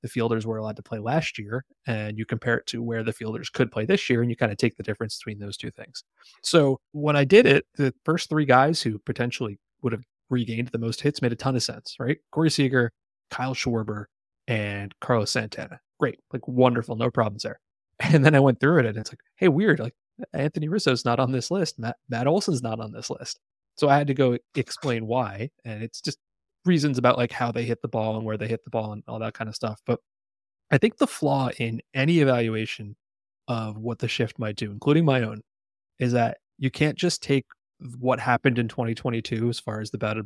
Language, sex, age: English, male, 30-49